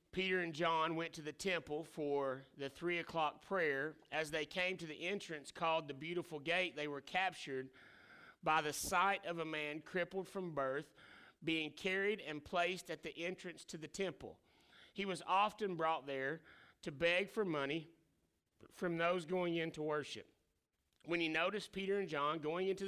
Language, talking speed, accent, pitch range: English, 175 wpm, American, 150-185 Hz